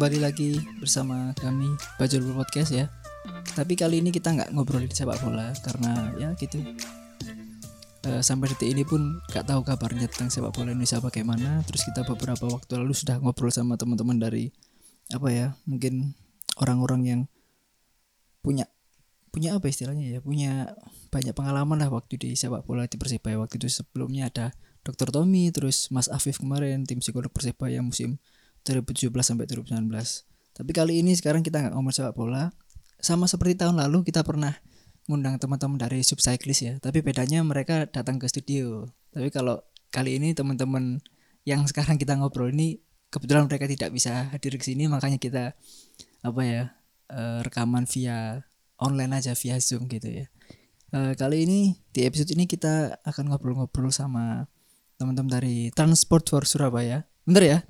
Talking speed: 160 wpm